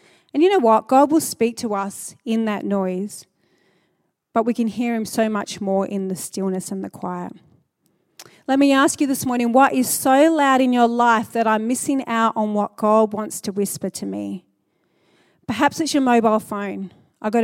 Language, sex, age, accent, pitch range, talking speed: English, female, 30-49, Australian, 200-245 Hz, 200 wpm